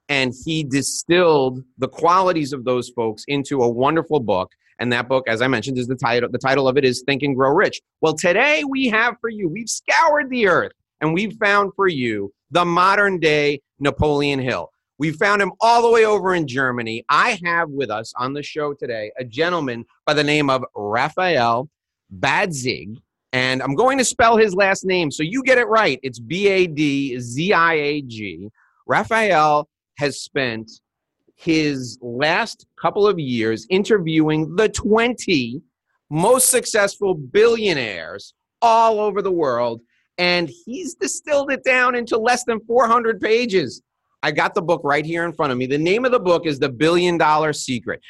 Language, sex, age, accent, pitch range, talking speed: English, male, 30-49, American, 135-210 Hz, 170 wpm